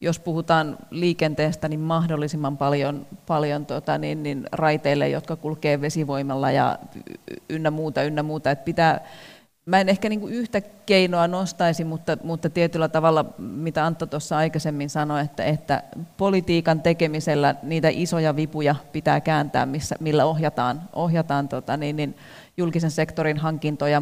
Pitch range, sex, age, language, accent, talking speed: 150-165 Hz, female, 30-49, Finnish, native, 140 wpm